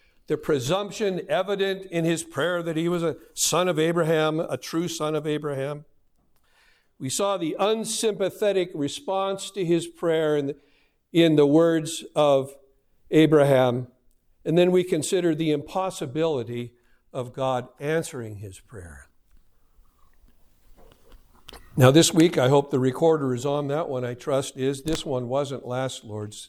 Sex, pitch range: male, 125-170 Hz